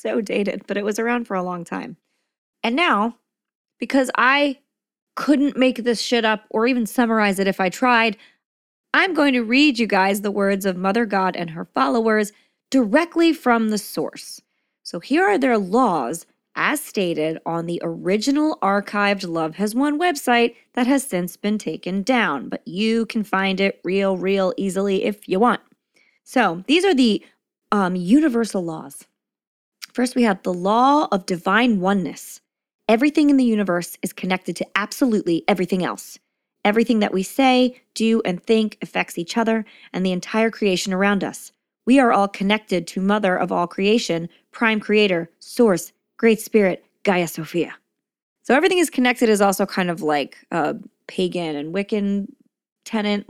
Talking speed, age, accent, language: 165 wpm, 30-49, American, English